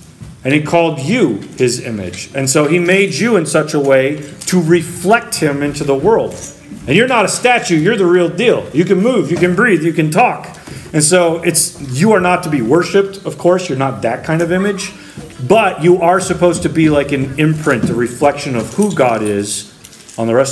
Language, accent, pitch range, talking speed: English, American, 135-175 Hz, 215 wpm